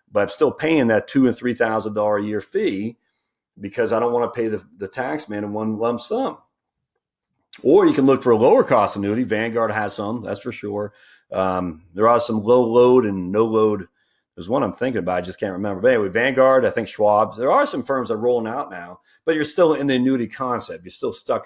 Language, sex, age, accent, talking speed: English, male, 40-59, American, 230 wpm